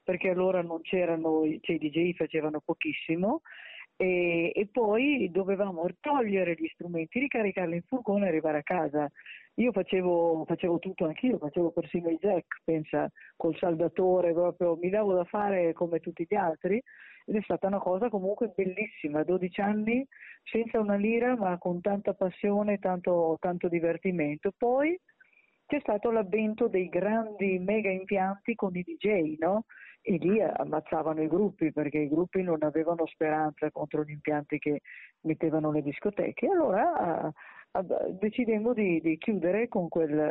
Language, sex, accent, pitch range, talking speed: Italian, female, native, 165-215 Hz, 155 wpm